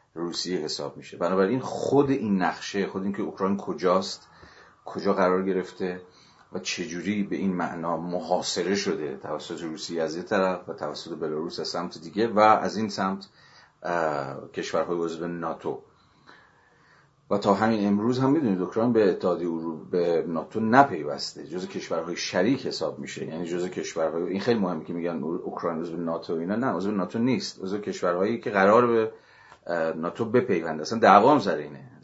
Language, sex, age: Persian, male, 40-59